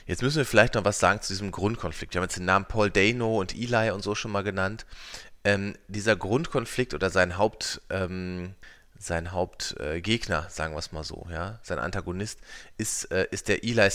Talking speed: 200 wpm